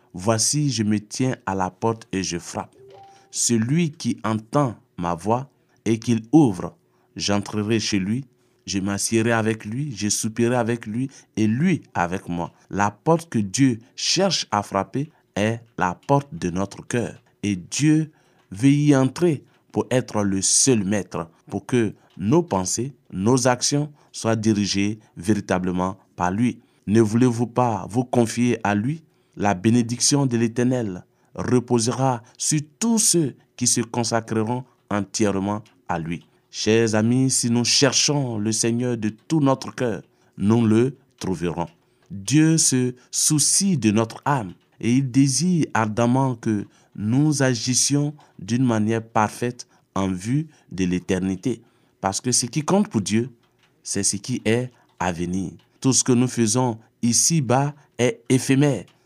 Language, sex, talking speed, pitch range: French, male, 150 wpm, 105-130 Hz